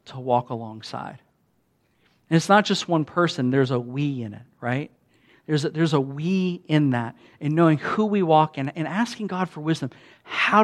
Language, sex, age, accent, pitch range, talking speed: English, male, 50-69, American, 135-180 Hz, 190 wpm